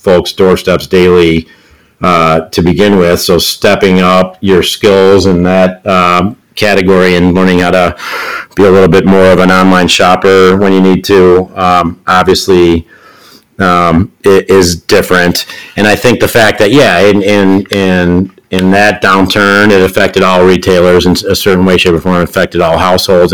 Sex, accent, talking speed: male, American, 170 wpm